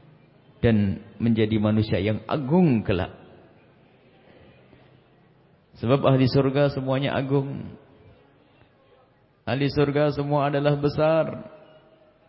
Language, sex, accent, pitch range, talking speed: English, male, Indonesian, 125-150 Hz, 80 wpm